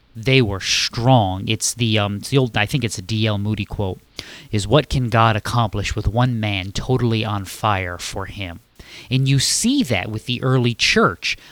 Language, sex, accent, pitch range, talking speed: English, male, American, 105-135 Hz, 190 wpm